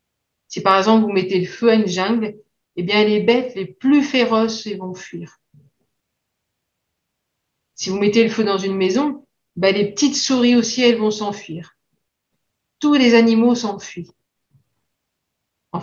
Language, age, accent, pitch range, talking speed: French, 50-69, French, 195-245 Hz, 150 wpm